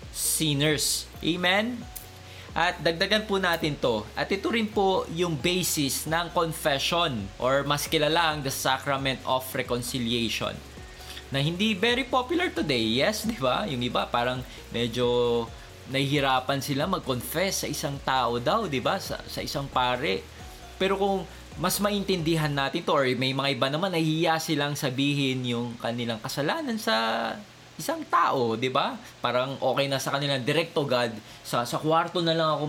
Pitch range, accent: 120-170 Hz, native